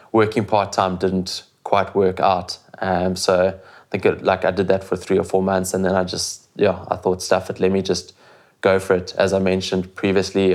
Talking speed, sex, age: 230 wpm, male, 20-39